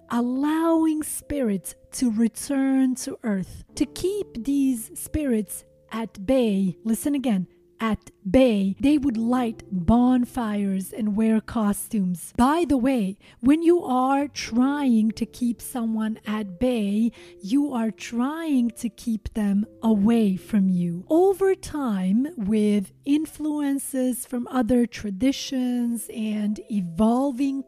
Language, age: English, 30-49